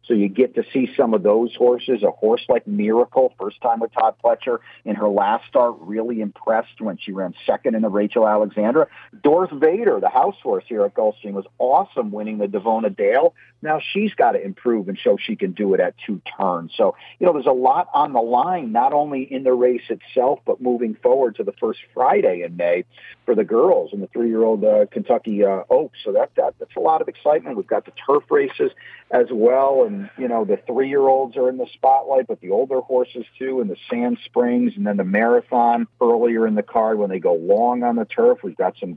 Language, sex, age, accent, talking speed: English, male, 50-69, American, 225 wpm